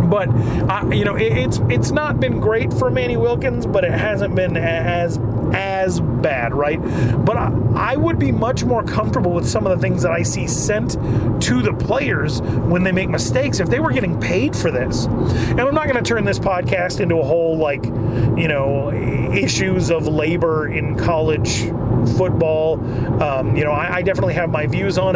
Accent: American